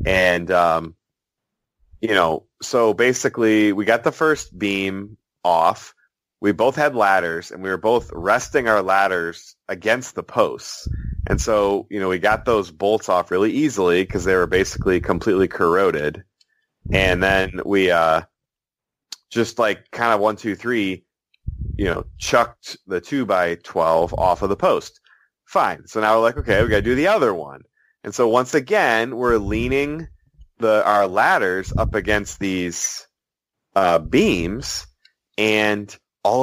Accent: American